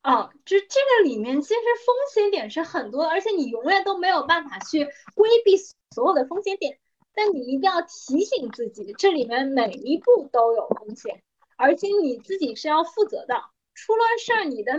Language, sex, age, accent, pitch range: Chinese, female, 20-39, native, 260-390 Hz